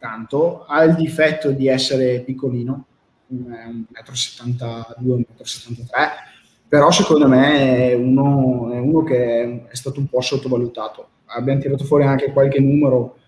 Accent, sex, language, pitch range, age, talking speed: native, male, Italian, 125-145 Hz, 20-39, 120 wpm